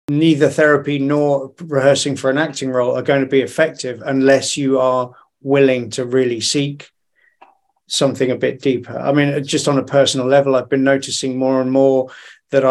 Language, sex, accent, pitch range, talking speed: English, male, British, 130-145 Hz, 180 wpm